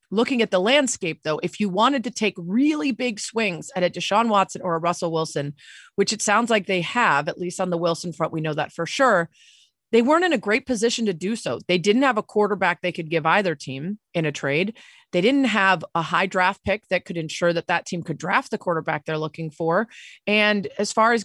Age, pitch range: 30-49, 165-220 Hz